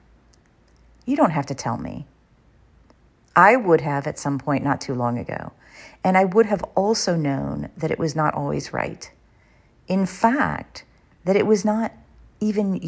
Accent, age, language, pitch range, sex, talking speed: American, 40-59, English, 140-210 Hz, female, 165 wpm